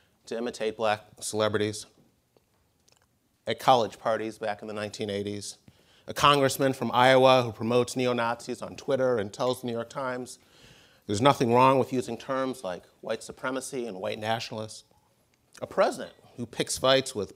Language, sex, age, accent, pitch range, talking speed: English, male, 30-49, American, 110-130 Hz, 150 wpm